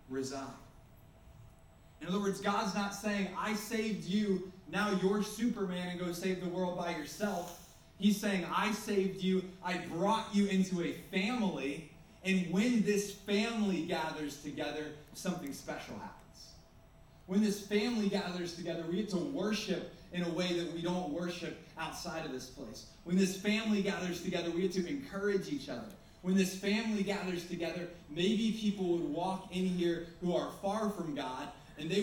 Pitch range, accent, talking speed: 150-200 Hz, American, 165 wpm